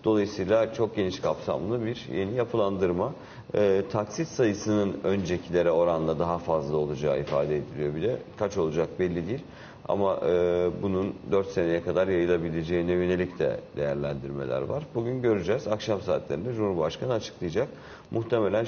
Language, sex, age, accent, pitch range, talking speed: Turkish, male, 50-69, native, 85-105 Hz, 130 wpm